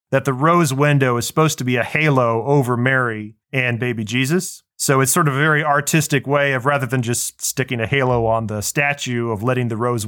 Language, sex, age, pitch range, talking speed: English, male, 30-49, 125-160 Hz, 220 wpm